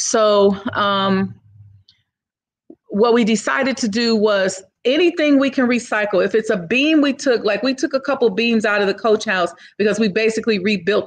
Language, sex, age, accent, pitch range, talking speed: English, female, 30-49, American, 185-225 Hz, 180 wpm